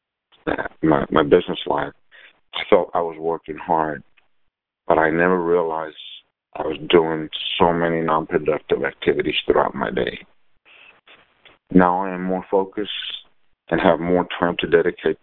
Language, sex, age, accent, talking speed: English, male, 50-69, American, 145 wpm